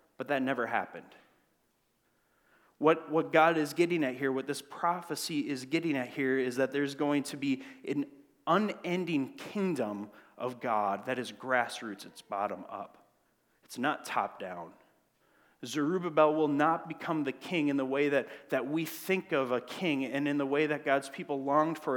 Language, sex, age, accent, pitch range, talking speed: English, male, 30-49, American, 130-165 Hz, 175 wpm